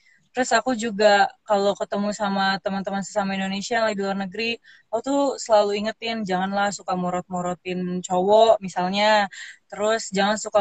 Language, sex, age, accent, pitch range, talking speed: Indonesian, female, 20-39, native, 200-245 Hz, 140 wpm